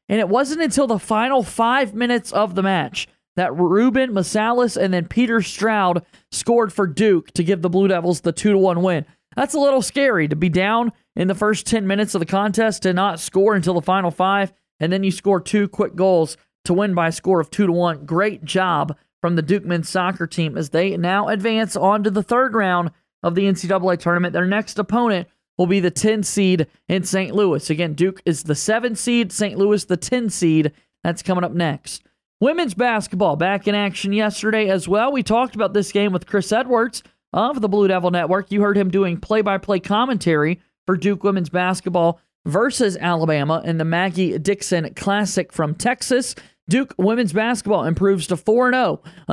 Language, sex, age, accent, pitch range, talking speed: English, male, 20-39, American, 175-215 Hz, 195 wpm